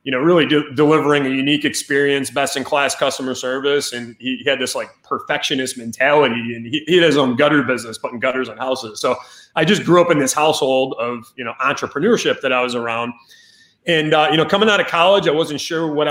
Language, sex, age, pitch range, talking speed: English, male, 30-49, 130-150 Hz, 220 wpm